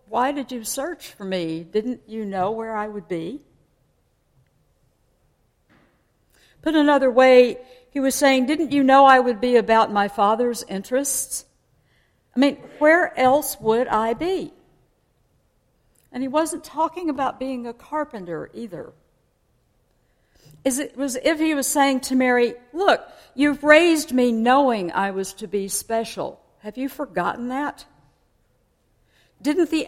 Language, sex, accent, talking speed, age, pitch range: English, female, American, 140 wpm, 60-79, 200-270 Hz